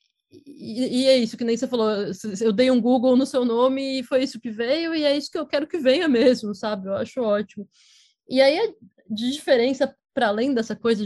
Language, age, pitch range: Portuguese, 20-39, 215-265 Hz